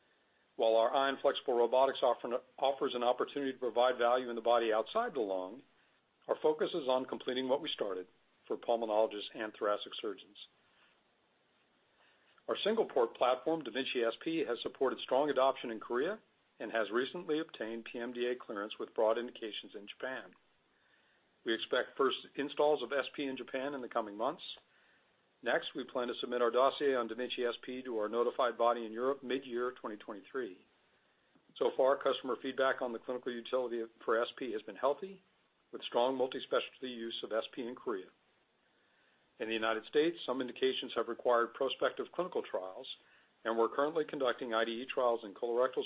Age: 50-69